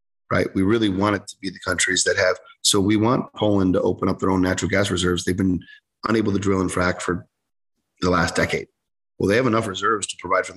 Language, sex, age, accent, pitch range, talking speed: English, male, 30-49, American, 90-105 Hz, 240 wpm